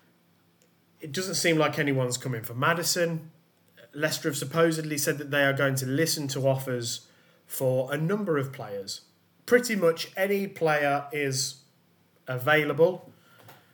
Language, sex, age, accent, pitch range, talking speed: English, male, 30-49, British, 125-160 Hz, 135 wpm